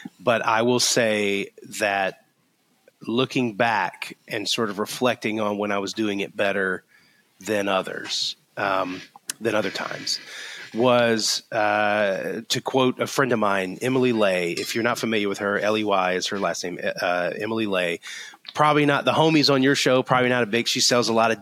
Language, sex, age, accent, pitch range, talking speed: English, male, 30-49, American, 100-120 Hz, 180 wpm